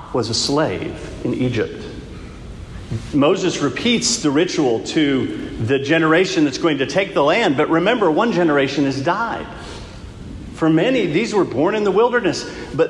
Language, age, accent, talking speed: English, 50-69, American, 155 wpm